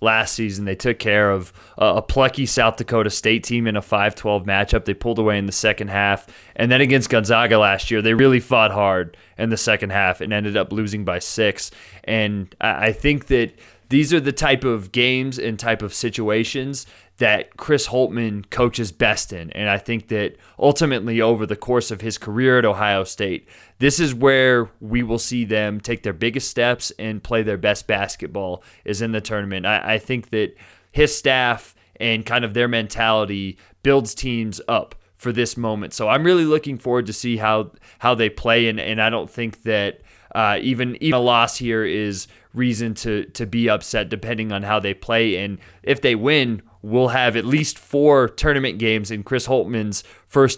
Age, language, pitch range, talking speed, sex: 20-39, English, 105-125 Hz, 195 wpm, male